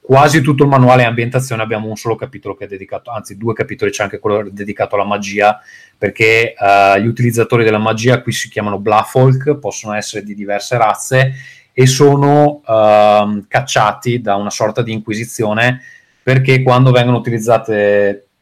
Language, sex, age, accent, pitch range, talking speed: Italian, male, 30-49, native, 105-130 Hz, 165 wpm